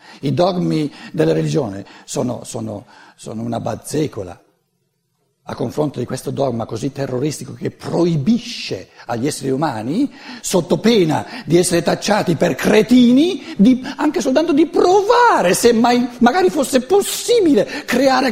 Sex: male